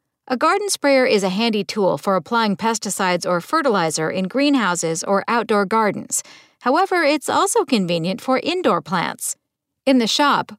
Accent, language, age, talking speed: American, English, 50-69, 155 wpm